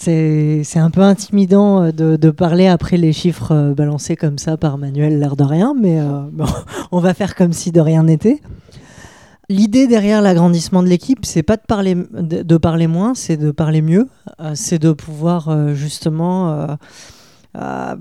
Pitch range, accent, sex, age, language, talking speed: 150-180 Hz, French, female, 20-39, French, 185 wpm